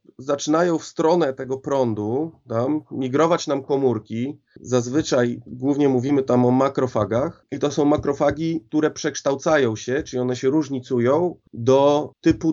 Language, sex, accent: Polish, male, native